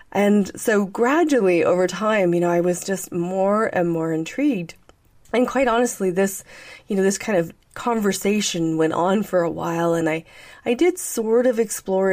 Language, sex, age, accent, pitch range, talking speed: English, female, 30-49, American, 170-220 Hz, 180 wpm